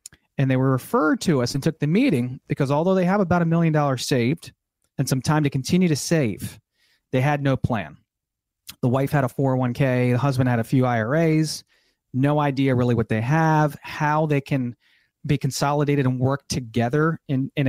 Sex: male